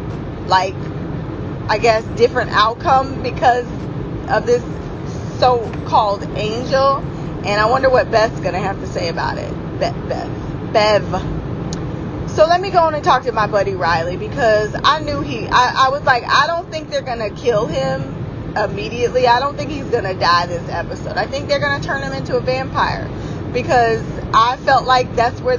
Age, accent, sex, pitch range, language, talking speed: 20-39, American, female, 155-240 Hz, English, 175 wpm